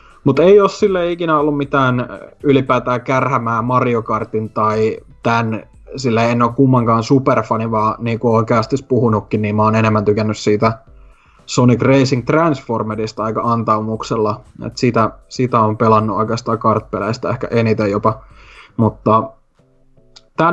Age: 20-39